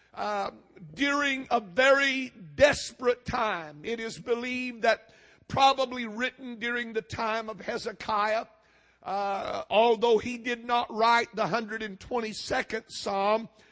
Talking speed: 115 wpm